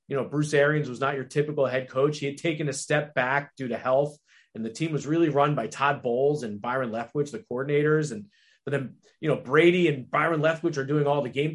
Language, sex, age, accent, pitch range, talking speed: English, male, 30-49, American, 135-170 Hz, 245 wpm